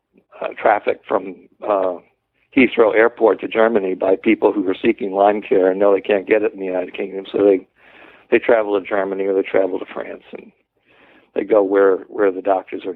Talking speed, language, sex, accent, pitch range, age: 205 wpm, English, male, American, 100-120 Hz, 60-79